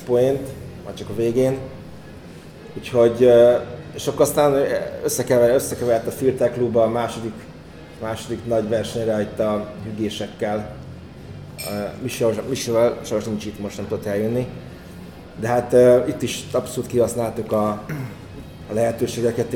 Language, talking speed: Hungarian, 125 wpm